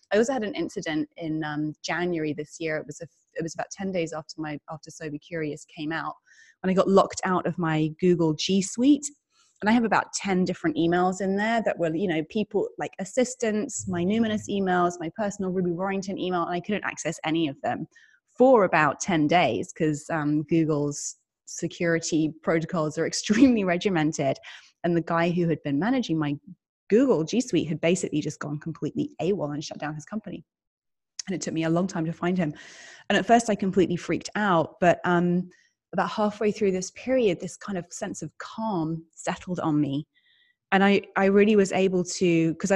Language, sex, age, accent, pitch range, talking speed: English, female, 20-39, British, 160-195 Hz, 200 wpm